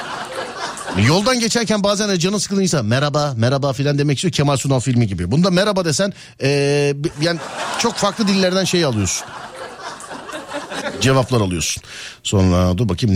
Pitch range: 95-145 Hz